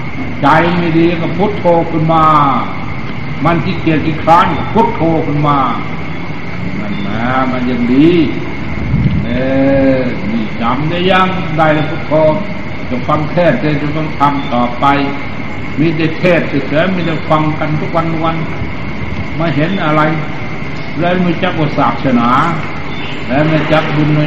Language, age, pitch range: Thai, 60-79, 145-170 Hz